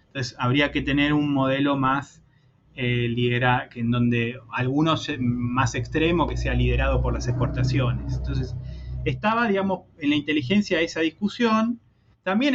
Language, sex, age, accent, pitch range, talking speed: Spanish, male, 20-39, Argentinian, 115-150 Hz, 145 wpm